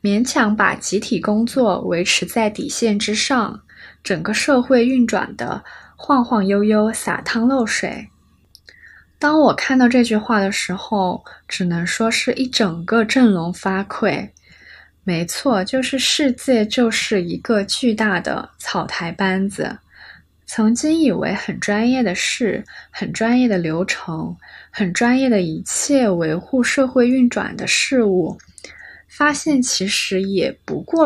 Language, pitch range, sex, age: Chinese, 200-255 Hz, female, 20-39